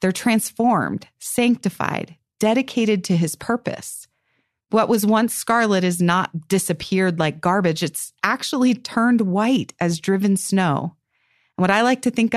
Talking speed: 140 wpm